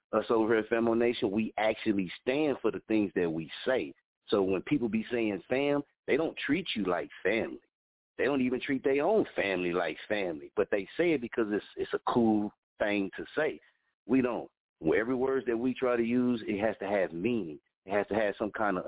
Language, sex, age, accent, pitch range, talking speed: English, male, 40-59, American, 115-150 Hz, 220 wpm